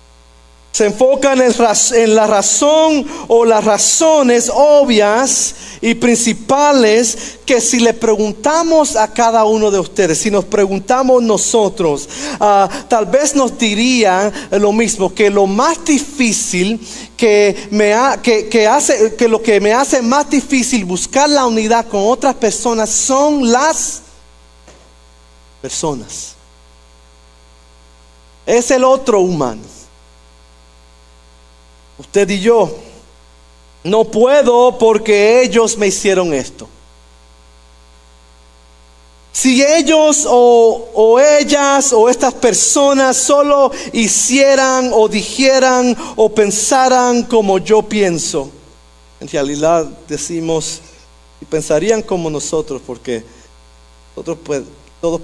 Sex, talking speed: male, 110 wpm